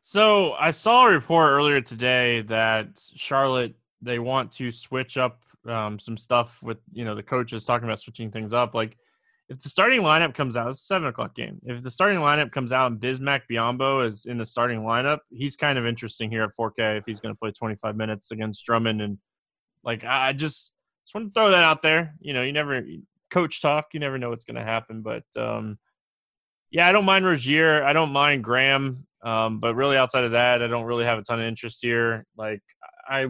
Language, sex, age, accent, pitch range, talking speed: English, male, 20-39, American, 115-145 Hz, 215 wpm